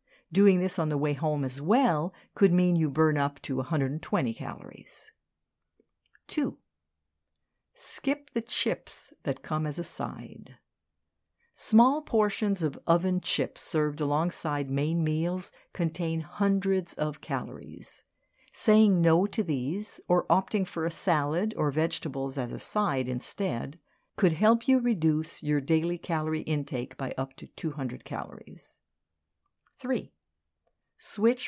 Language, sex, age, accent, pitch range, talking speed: English, female, 60-79, American, 140-200 Hz, 130 wpm